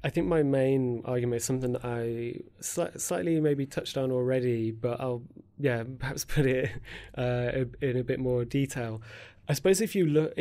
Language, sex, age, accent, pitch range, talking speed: English, male, 30-49, British, 115-130 Hz, 180 wpm